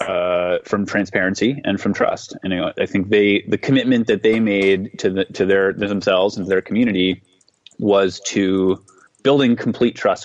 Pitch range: 85-110 Hz